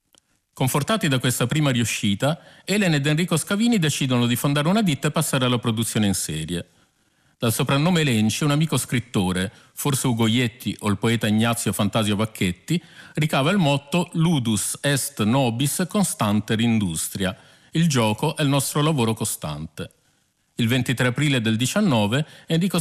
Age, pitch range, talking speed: 50-69, 115-160 Hz, 145 wpm